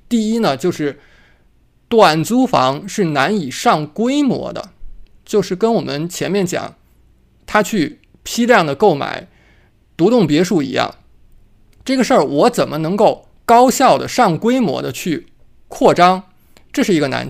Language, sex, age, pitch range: Chinese, male, 20-39, 155-235 Hz